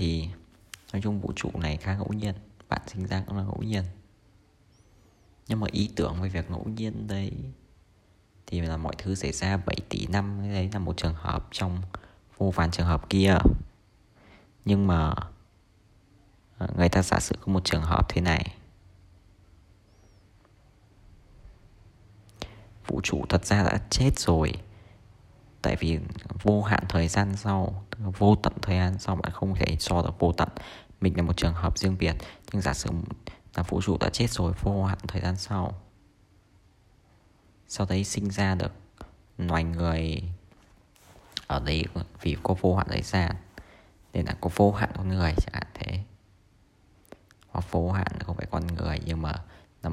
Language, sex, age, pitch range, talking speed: Vietnamese, male, 20-39, 85-105 Hz, 170 wpm